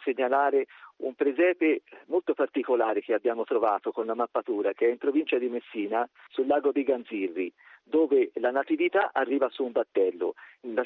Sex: male